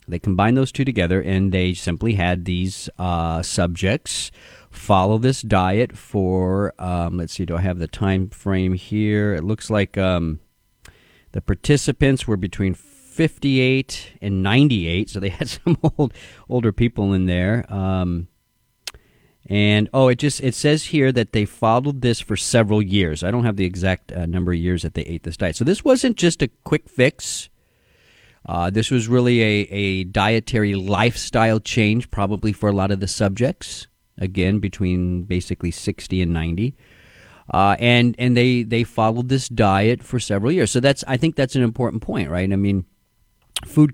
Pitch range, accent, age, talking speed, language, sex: 95-120 Hz, American, 50-69, 170 wpm, English, male